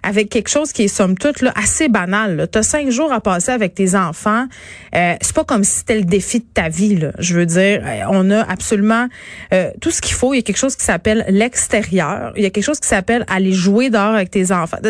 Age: 30-49